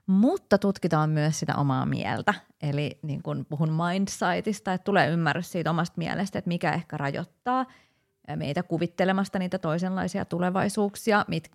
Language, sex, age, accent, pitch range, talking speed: Finnish, female, 30-49, native, 155-195 Hz, 140 wpm